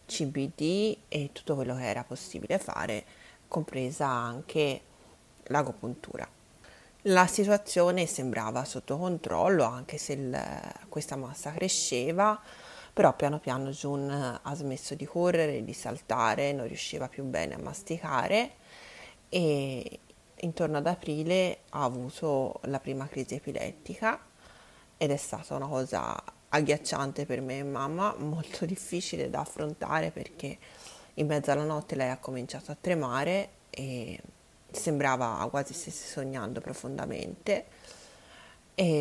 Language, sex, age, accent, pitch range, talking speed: Italian, female, 30-49, native, 130-165 Hz, 120 wpm